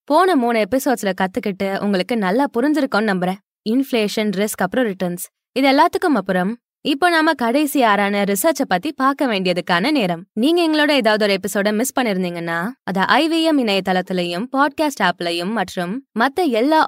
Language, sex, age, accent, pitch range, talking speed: Tamil, female, 20-39, native, 190-275 Hz, 55 wpm